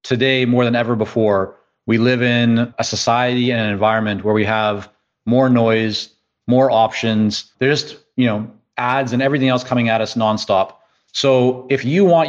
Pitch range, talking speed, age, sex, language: 115-135 Hz, 170 wpm, 30-49, male, English